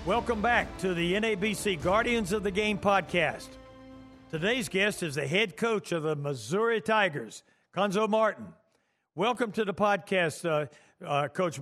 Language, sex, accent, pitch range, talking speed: English, male, American, 160-190 Hz, 150 wpm